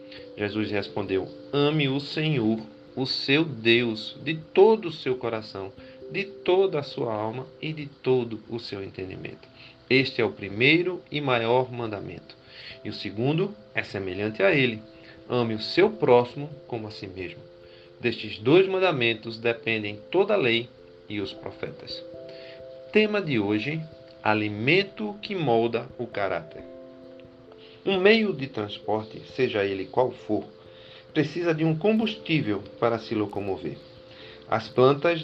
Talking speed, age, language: 140 wpm, 40-59, Portuguese